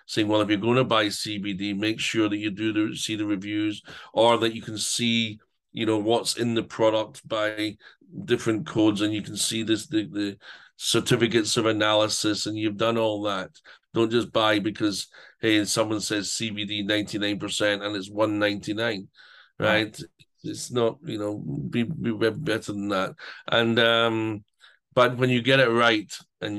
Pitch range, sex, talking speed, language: 105-125 Hz, male, 185 wpm, English